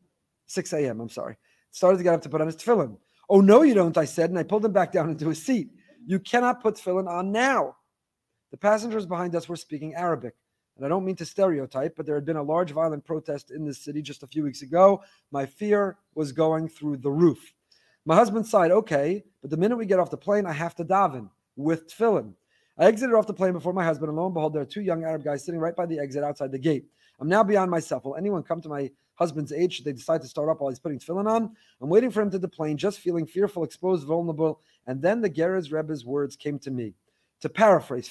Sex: male